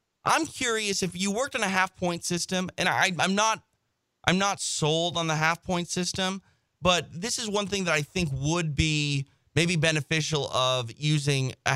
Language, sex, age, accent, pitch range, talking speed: English, male, 30-49, American, 130-175 Hz, 190 wpm